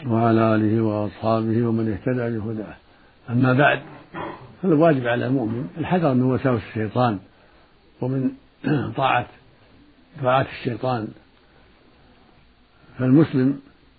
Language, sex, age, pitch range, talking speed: Arabic, male, 60-79, 115-140 Hz, 80 wpm